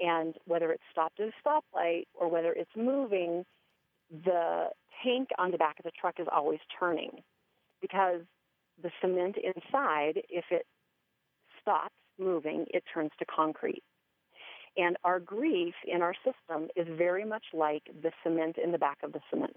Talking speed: 160 wpm